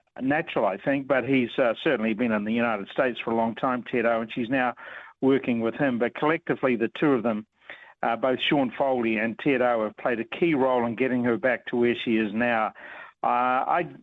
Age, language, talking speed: 60-79, English, 225 wpm